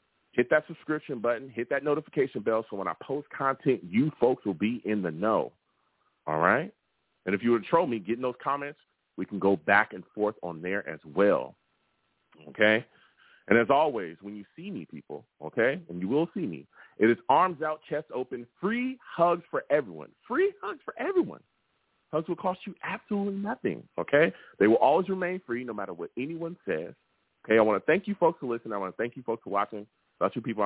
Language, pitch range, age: English, 100-165 Hz, 30-49